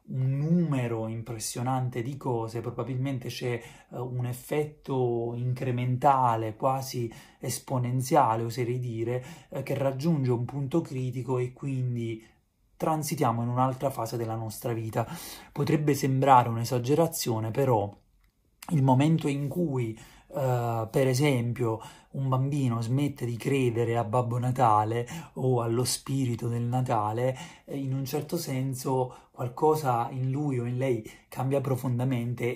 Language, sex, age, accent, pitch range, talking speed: Italian, male, 30-49, native, 120-140 Hz, 125 wpm